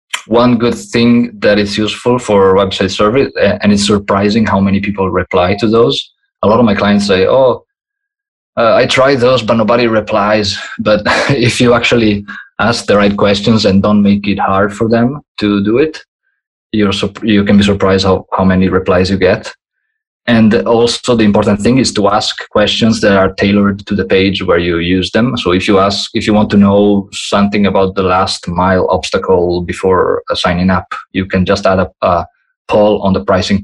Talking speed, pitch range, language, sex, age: 190 wpm, 100-115 Hz, English, male, 20-39